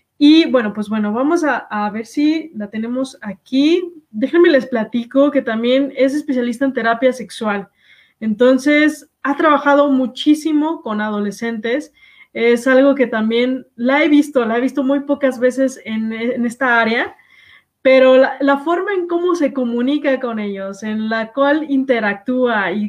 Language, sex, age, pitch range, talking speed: Spanish, female, 20-39, 230-285 Hz, 155 wpm